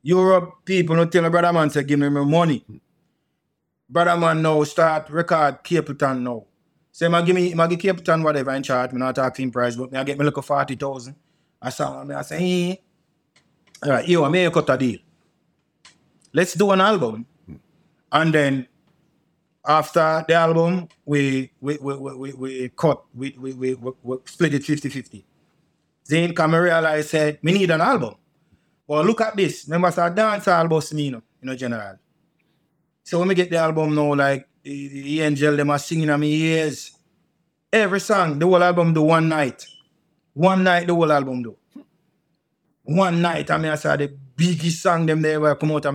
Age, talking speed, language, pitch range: 30-49, 195 wpm, English, 145-175 Hz